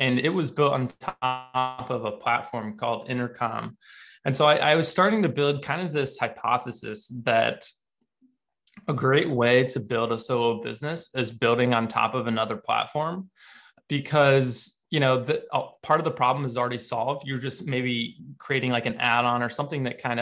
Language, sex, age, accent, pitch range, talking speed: English, male, 20-39, American, 120-150 Hz, 185 wpm